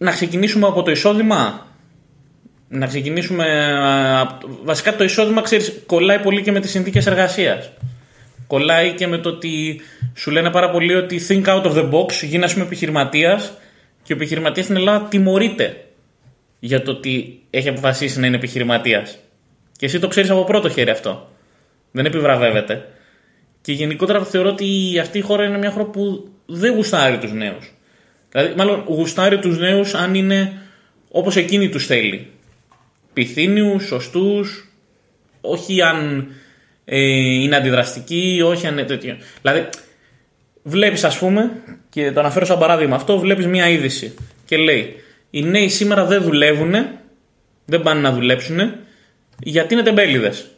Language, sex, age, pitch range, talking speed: Greek, male, 20-39, 140-195 Hz, 145 wpm